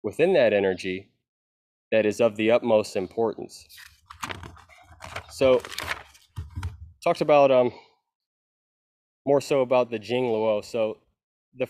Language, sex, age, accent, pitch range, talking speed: English, male, 20-39, American, 105-135 Hz, 110 wpm